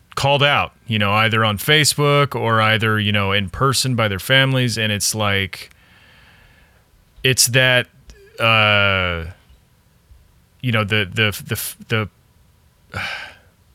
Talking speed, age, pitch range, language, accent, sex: 125 wpm, 30-49, 100-120 Hz, English, American, male